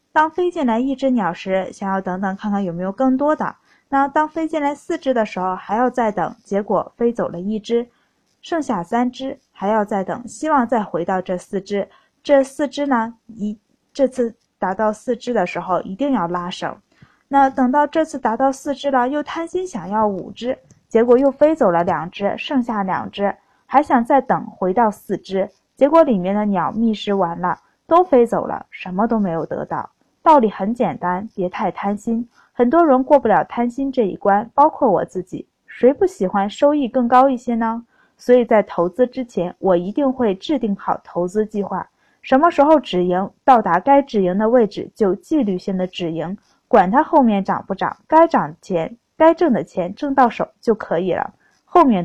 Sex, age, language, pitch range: female, 20-39, Chinese, 195-270 Hz